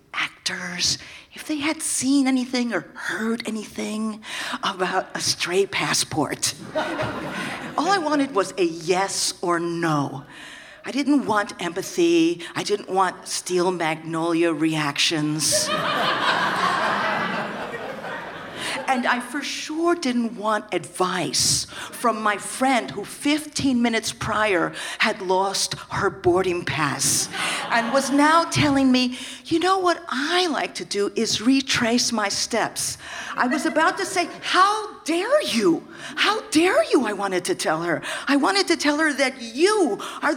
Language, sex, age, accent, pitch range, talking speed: English, female, 50-69, American, 190-310 Hz, 135 wpm